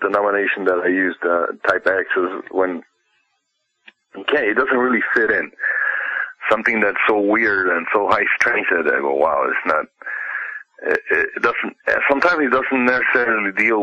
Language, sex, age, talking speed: English, male, 40-59, 170 wpm